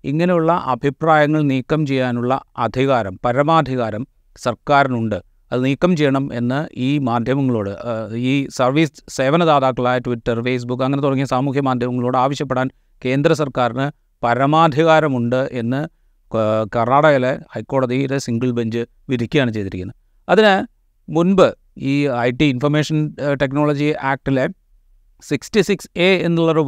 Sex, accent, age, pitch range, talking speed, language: male, native, 30-49, 125-155 Hz, 100 wpm, Malayalam